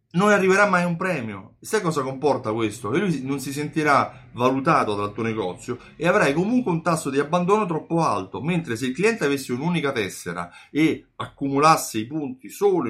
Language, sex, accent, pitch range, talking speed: Italian, male, native, 110-155 Hz, 180 wpm